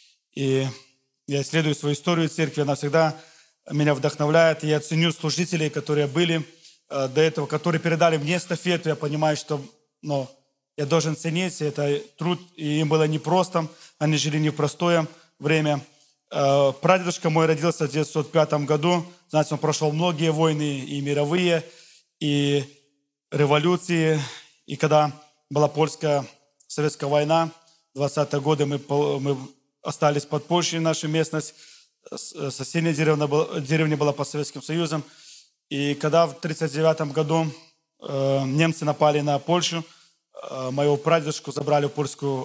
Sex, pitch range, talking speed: male, 145-165 Hz, 130 wpm